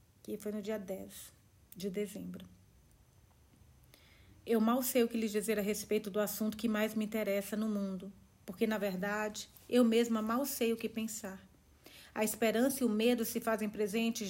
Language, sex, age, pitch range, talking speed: Portuguese, female, 40-59, 205-250 Hz, 170 wpm